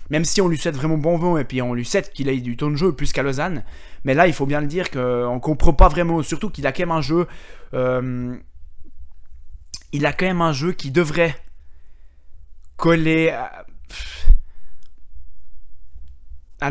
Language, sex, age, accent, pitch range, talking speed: French, male, 20-39, French, 120-165 Hz, 190 wpm